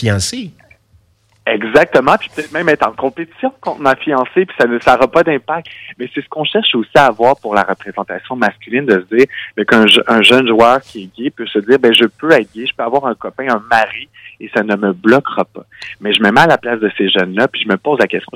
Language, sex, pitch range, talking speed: French, male, 100-135 Hz, 250 wpm